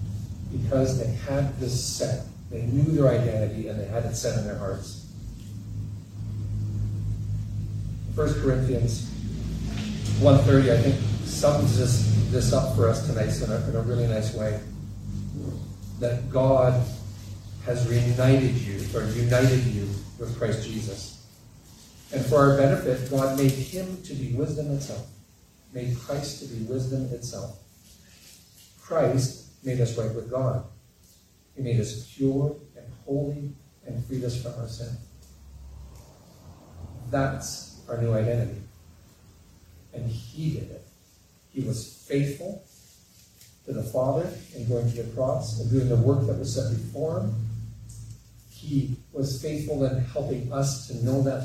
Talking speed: 140 wpm